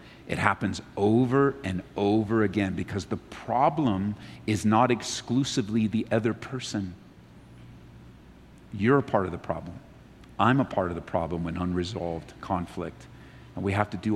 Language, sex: English, male